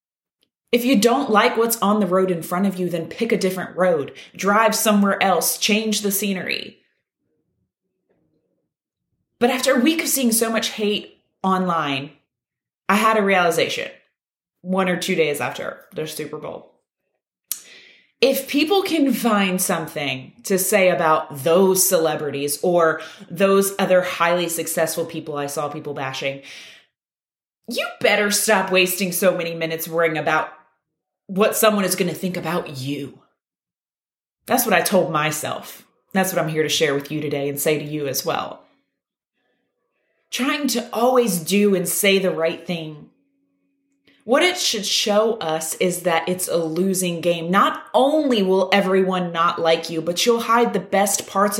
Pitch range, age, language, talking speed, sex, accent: 165-235 Hz, 20-39, English, 155 wpm, female, American